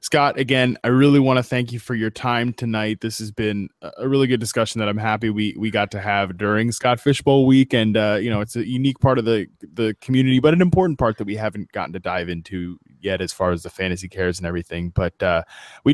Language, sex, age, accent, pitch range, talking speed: English, male, 20-39, American, 105-135 Hz, 250 wpm